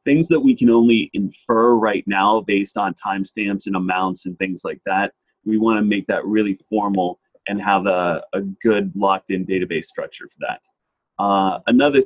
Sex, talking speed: male, 180 wpm